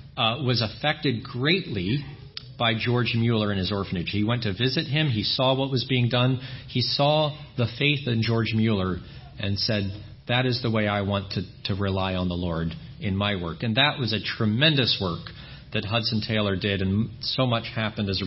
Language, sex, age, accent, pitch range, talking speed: English, male, 40-59, American, 110-135 Hz, 200 wpm